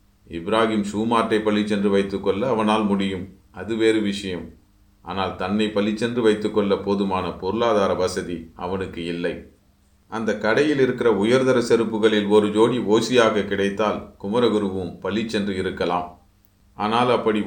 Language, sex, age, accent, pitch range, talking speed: Tamil, male, 30-49, native, 100-115 Hz, 115 wpm